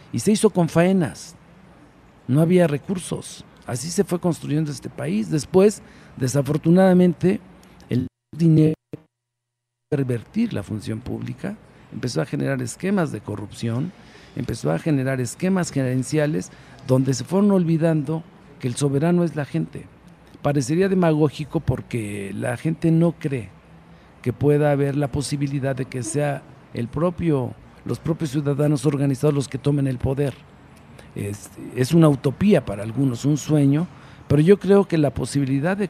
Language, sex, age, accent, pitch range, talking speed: Spanish, male, 50-69, Mexican, 120-160 Hz, 140 wpm